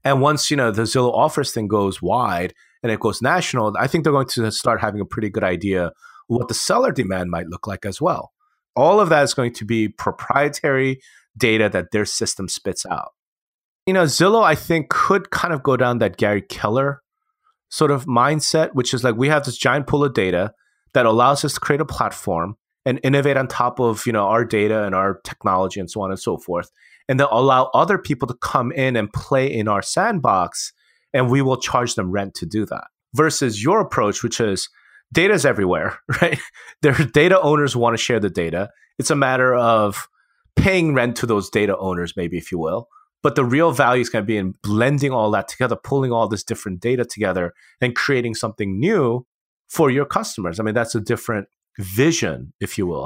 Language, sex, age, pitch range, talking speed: English, male, 30-49, 105-140 Hz, 215 wpm